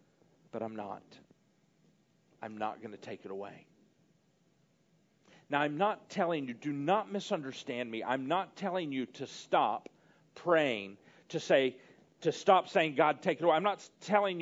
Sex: male